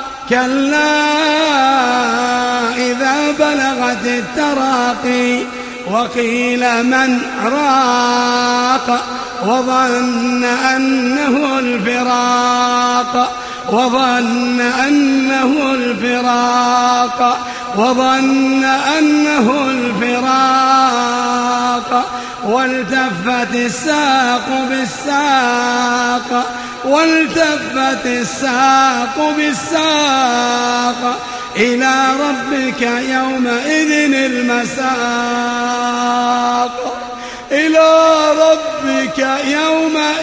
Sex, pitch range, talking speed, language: male, 245-270 Hz, 50 wpm, Arabic